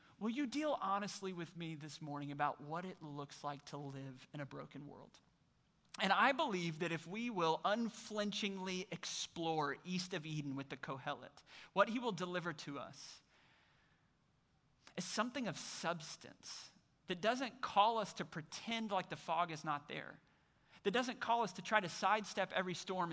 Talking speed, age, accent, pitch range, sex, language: 170 wpm, 30-49, American, 155-210 Hz, male, English